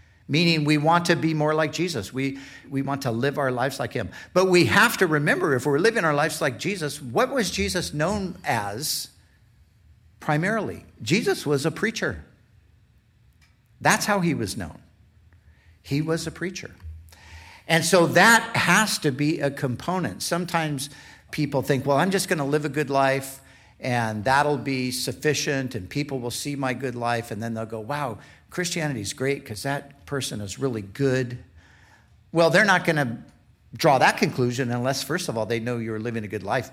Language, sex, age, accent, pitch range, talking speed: English, male, 50-69, American, 110-160 Hz, 185 wpm